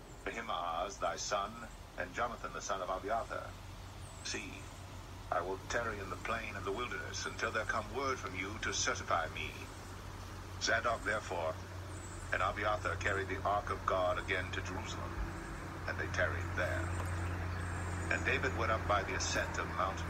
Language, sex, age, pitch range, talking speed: English, male, 60-79, 70-95 Hz, 160 wpm